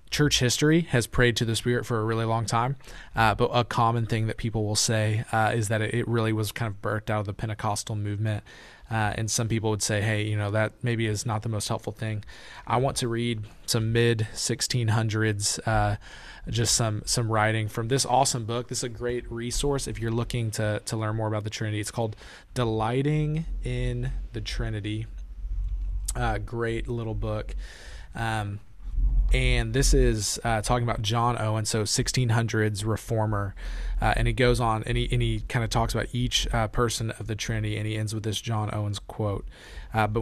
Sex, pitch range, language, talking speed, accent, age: male, 105-120 Hz, English, 200 wpm, American, 20-39